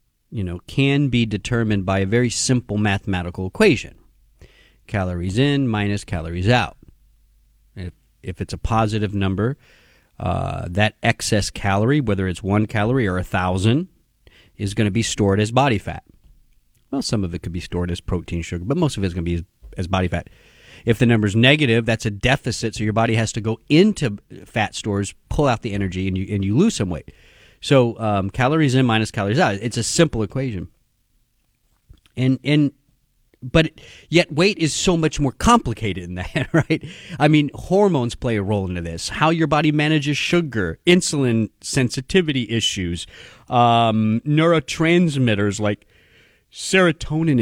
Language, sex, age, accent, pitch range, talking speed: English, male, 40-59, American, 100-145 Hz, 170 wpm